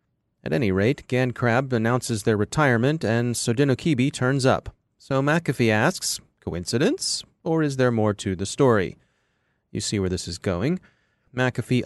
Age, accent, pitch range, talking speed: 30-49, American, 110-145 Hz, 145 wpm